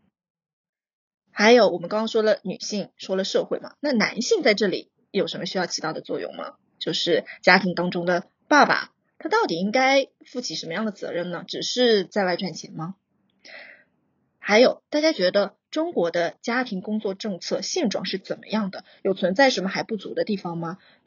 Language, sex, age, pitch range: Chinese, female, 20-39, 185-245 Hz